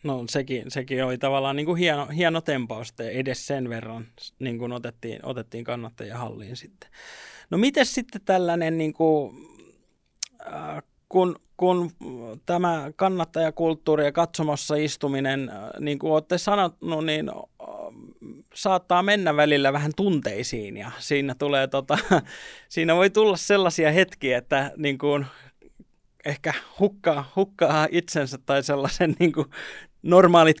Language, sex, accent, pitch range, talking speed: Finnish, male, native, 125-160 Hz, 120 wpm